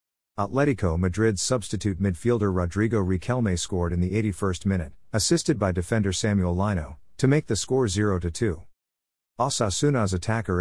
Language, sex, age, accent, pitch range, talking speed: English, male, 50-69, American, 90-115 Hz, 130 wpm